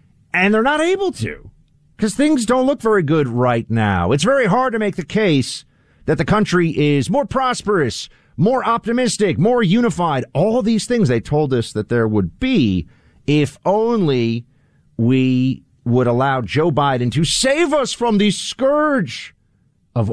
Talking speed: 160 wpm